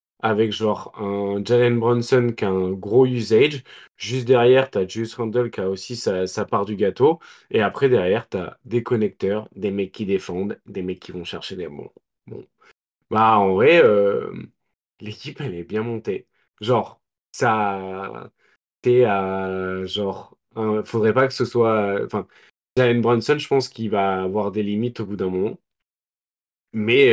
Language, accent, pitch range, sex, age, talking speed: French, French, 100-125 Hz, male, 20-39, 170 wpm